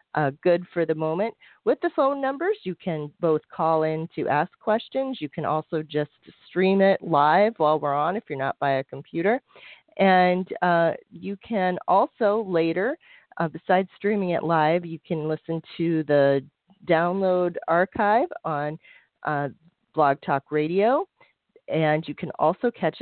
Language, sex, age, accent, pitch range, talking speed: English, female, 40-59, American, 150-185 Hz, 160 wpm